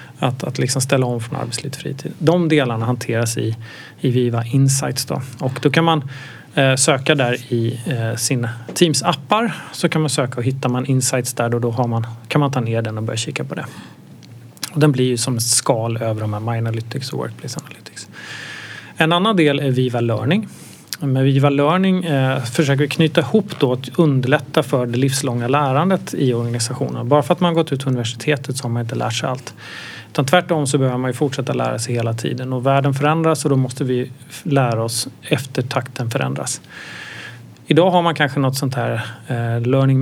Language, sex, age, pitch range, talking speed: Swedish, male, 30-49, 120-150 Hz, 205 wpm